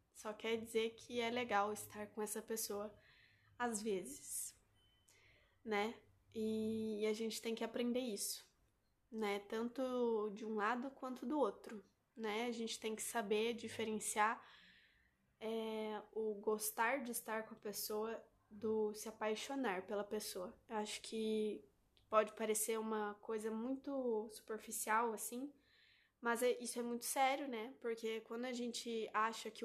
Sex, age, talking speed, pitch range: female, 10-29, 140 wpm, 215-235 Hz